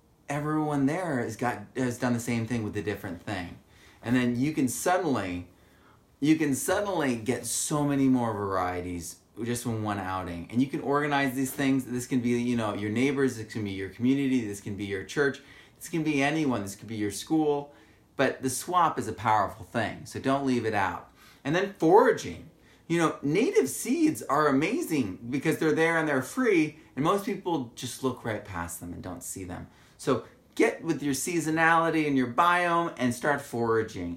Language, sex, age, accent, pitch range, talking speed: English, male, 30-49, American, 115-150 Hz, 195 wpm